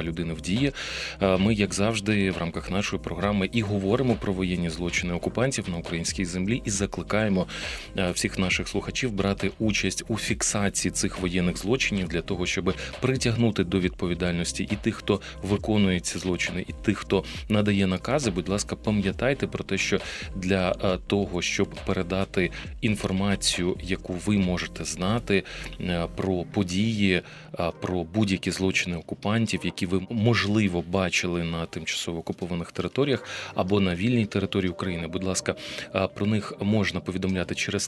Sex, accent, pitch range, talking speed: male, native, 90-100 Hz, 140 wpm